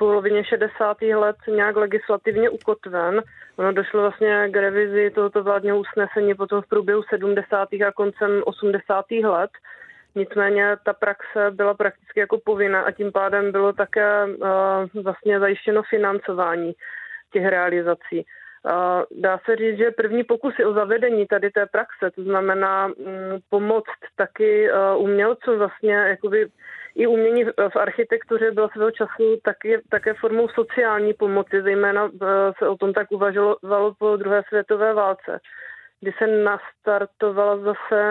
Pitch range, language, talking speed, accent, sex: 200-215 Hz, Czech, 130 wpm, native, female